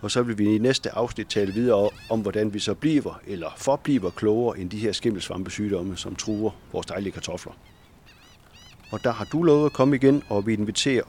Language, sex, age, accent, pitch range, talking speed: Danish, male, 40-59, native, 100-130 Hz, 200 wpm